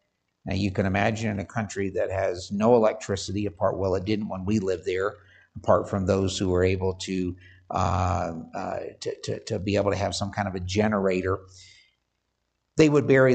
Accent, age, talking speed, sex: American, 50-69, 195 wpm, male